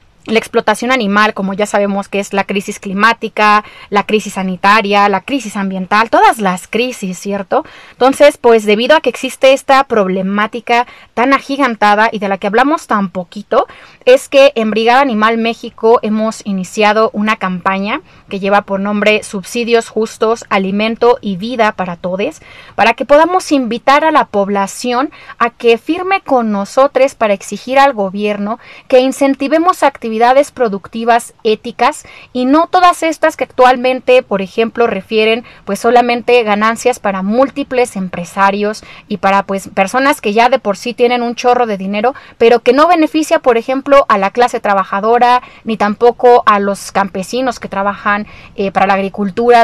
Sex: female